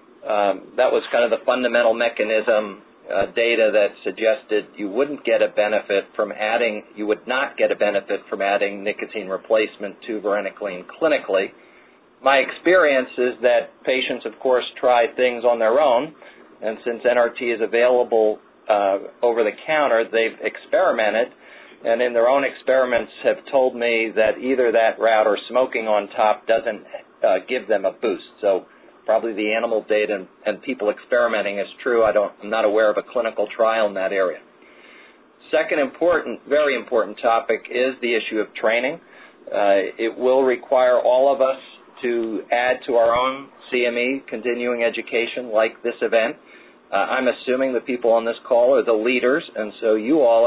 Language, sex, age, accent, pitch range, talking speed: English, male, 40-59, American, 110-125 Hz, 165 wpm